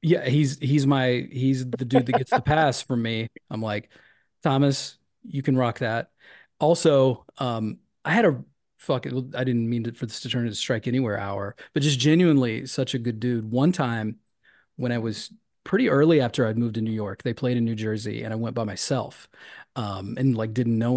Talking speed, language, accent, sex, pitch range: 210 wpm, English, American, male, 110-135 Hz